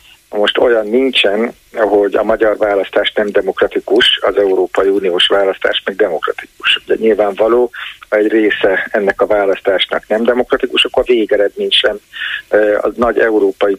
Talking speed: 135 wpm